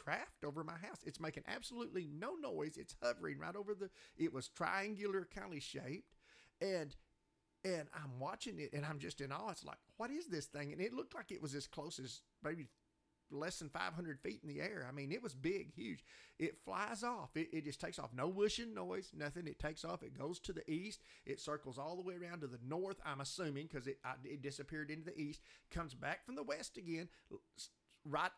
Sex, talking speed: male, 220 wpm